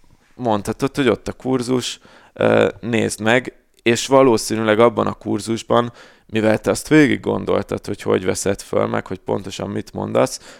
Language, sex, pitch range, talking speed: Hungarian, male, 105-120 Hz, 145 wpm